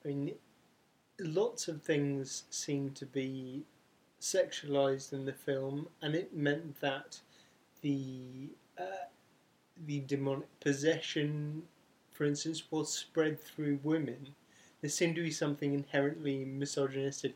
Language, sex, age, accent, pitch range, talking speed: English, male, 30-49, British, 135-155 Hz, 120 wpm